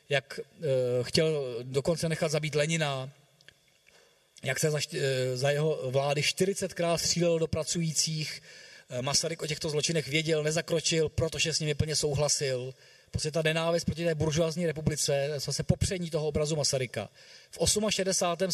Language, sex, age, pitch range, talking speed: Czech, male, 40-59, 140-170 Hz, 130 wpm